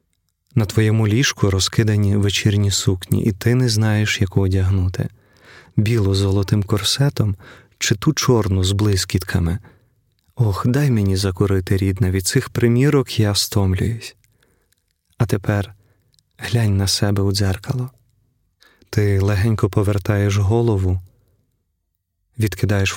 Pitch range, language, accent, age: 95-120 Hz, Ukrainian, native, 30-49